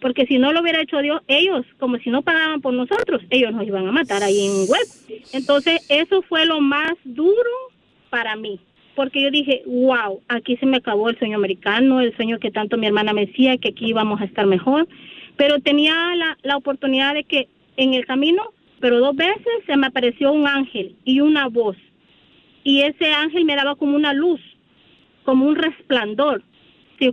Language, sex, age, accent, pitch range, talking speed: Spanish, female, 30-49, American, 250-310 Hz, 195 wpm